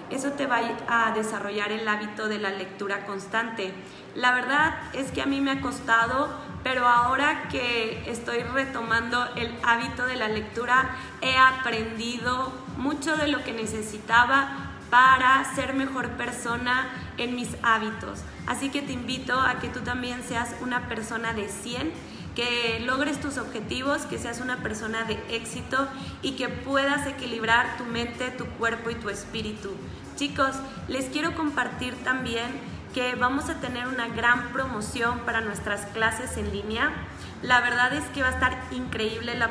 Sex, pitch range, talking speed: female, 225-260 Hz, 160 wpm